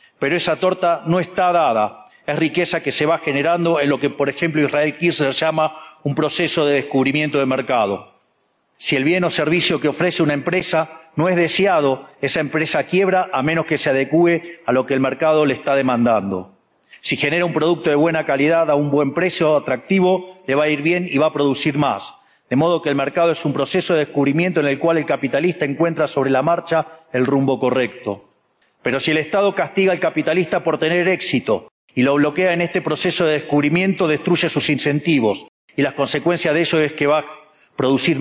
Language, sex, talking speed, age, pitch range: English, male, 205 wpm, 40-59, 140-170 Hz